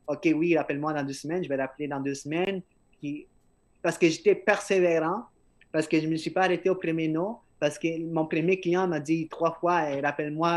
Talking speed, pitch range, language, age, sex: 245 wpm, 145-175 Hz, French, 20-39, male